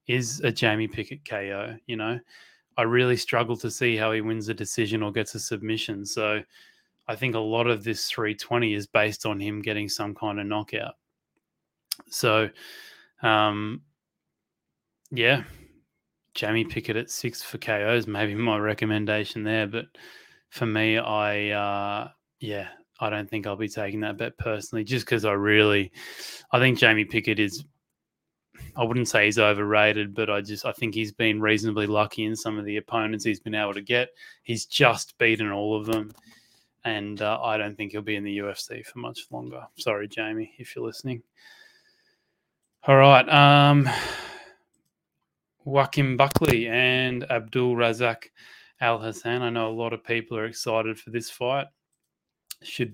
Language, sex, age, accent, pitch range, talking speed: English, male, 20-39, Australian, 105-120 Hz, 165 wpm